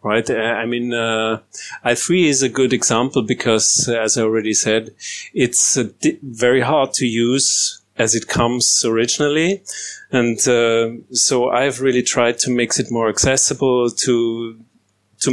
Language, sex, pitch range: English, male, 110-130 Hz